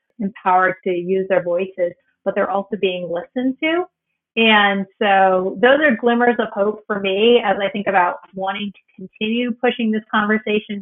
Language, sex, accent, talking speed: English, female, American, 165 wpm